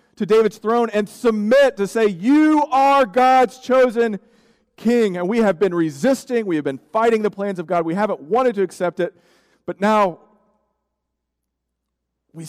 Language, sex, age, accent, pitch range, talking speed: English, male, 40-59, American, 165-235 Hz, 165 wpm